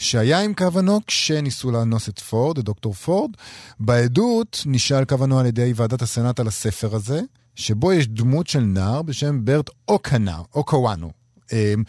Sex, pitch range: male, 110-145 Hz